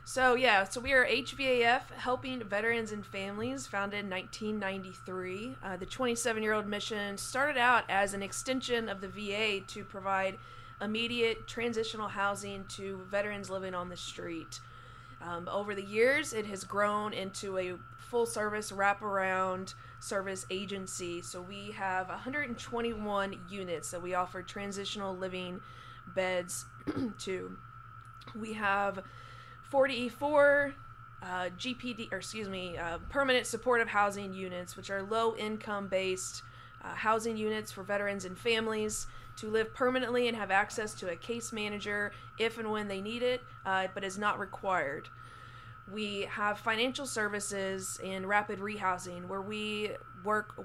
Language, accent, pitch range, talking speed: English, American, 190-225 Hz, 140 wpm